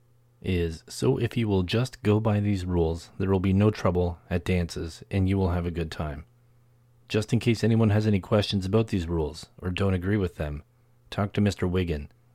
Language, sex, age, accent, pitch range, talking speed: English, male, 30-49, American, 85-110 Hz, 210 wpm